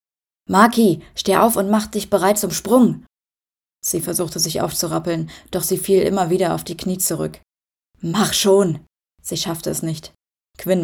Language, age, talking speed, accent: German, 20-39, 160 wpm, German